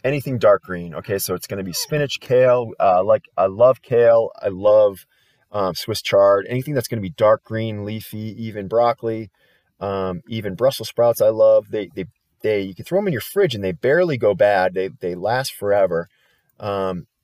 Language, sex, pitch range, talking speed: English, male, 95-120 Hz, 190 wpm